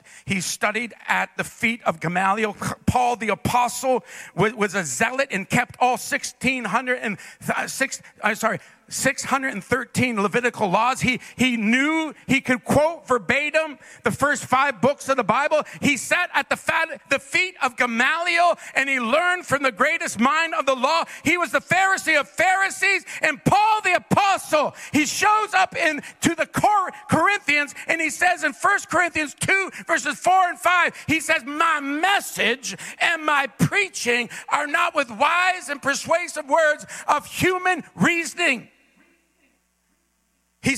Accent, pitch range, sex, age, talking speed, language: American, 240-330 Hz, male, 50-69, 145 wpm, English